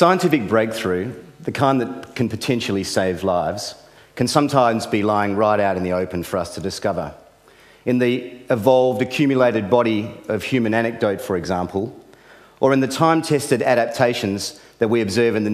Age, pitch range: 40-59, 100-125 Hz